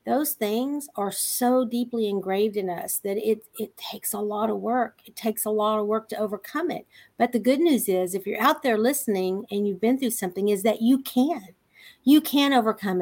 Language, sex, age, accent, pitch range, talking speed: English, female, 50-69, American, 220-280 Hz, 215 wpm